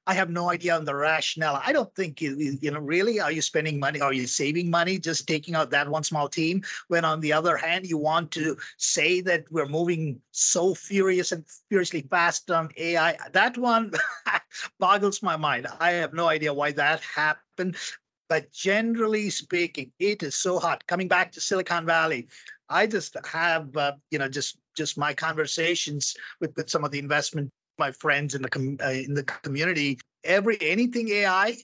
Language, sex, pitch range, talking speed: English, male, 155-190 Hz, 190 wpm